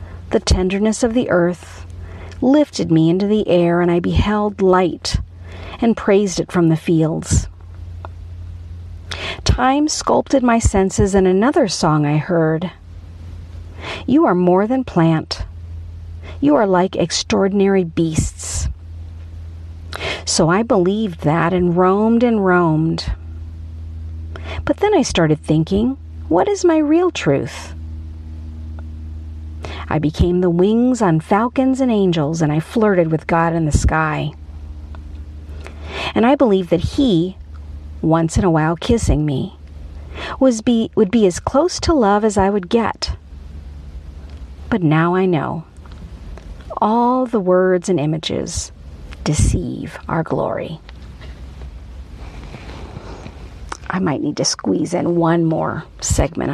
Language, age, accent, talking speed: English, 50-69, American, 125 wpm